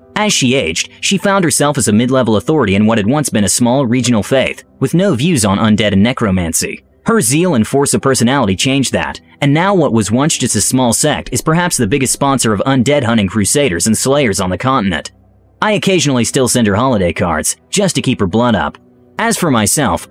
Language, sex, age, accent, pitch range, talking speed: English, male, 30-49, American, 110-145 Hz, 215 wpm